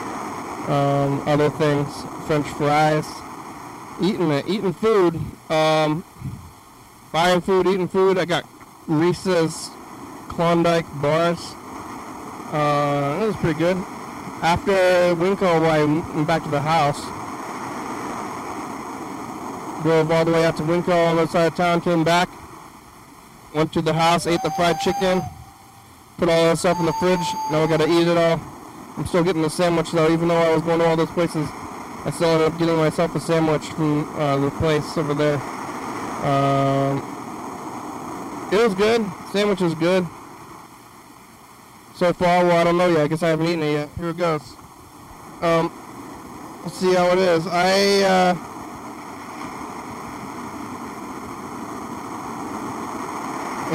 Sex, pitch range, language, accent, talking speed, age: male, 155-175 Hz, English, American, 145 wpm, 20-39